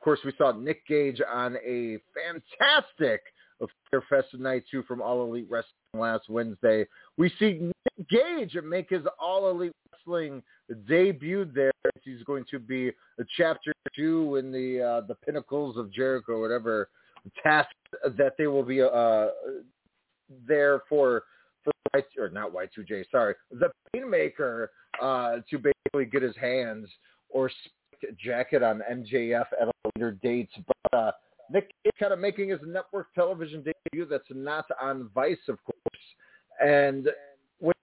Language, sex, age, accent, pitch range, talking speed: English, male, 30-49, American, 130-170 Hz, 150 wpm